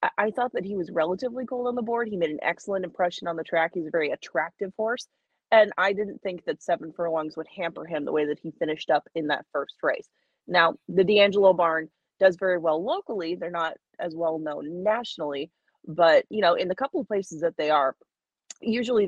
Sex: female